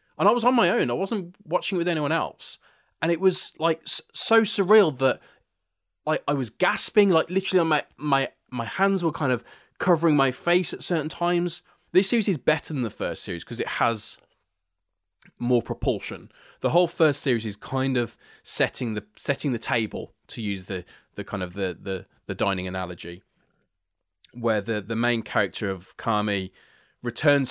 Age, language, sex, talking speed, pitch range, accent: 20-39, English, male, 185 wpm, 105-145 Hz, British